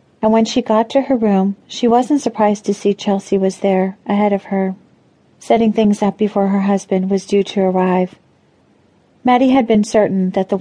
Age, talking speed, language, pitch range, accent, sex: 40-59, 190 wpm, English, 195-220 Hz, American, female